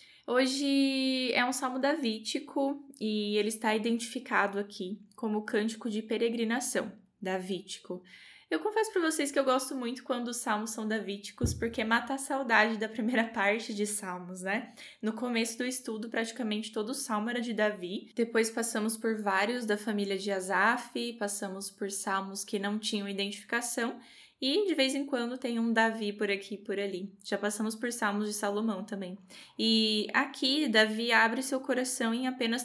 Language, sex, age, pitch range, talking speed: Portuguese, female, 10-29, 205-250 Hz, 170 wpm